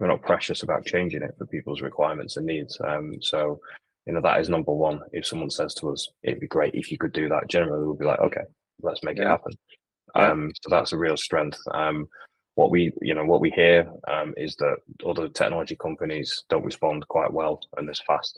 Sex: male